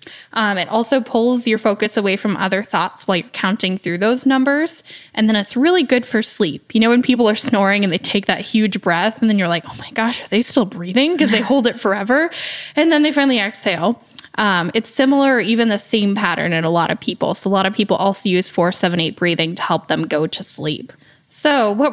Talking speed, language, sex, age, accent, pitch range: 240 wpm, English, female, 10-29, American, 200-270 Hz